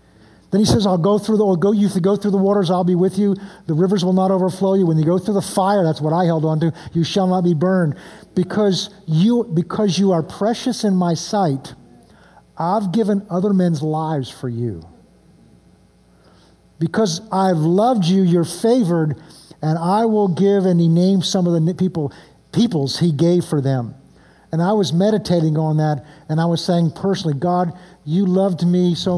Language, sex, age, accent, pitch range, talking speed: English, male, 50-69, American, 155-195 Hz, 200 wpm